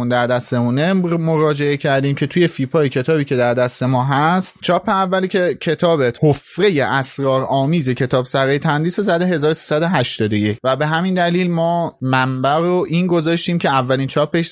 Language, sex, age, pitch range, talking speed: Persian, male, 30-49, 135-175 Hz, 160 wpm